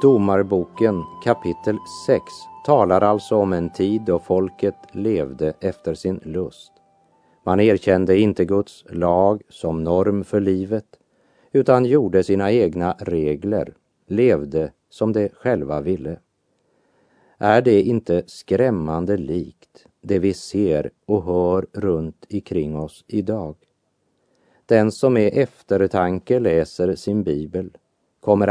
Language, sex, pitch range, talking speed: Portuguese, male, 85-110 Hz, 120 wpm